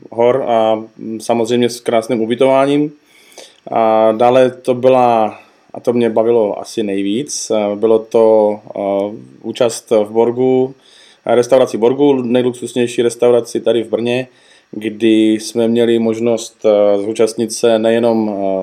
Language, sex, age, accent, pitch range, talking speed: Czech, male, 20-39, native, 110-120 Hz, 115 wpm